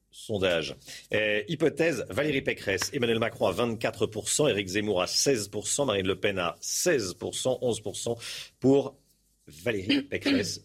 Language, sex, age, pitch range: French, male, 40-59, 100-130 Hz